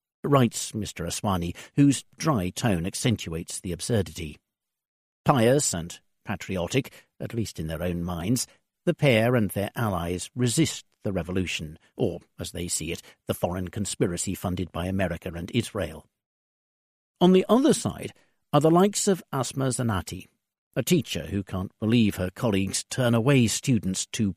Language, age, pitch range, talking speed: English, 60-79, 95-130 Hz, 150 wpm